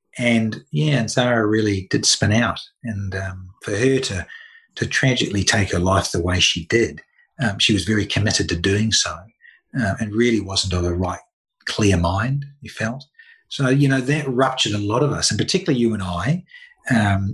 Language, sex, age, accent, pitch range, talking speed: English, male, 40-59, Australian, 100-140 Hz, 195 wpm